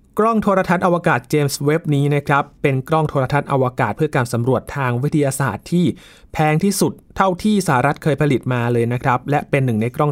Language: Thai